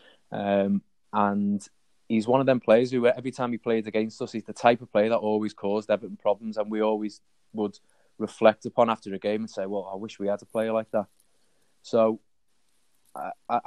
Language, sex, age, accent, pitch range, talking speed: English, male, 20-39, British, 105-115 Hz, 200 wpm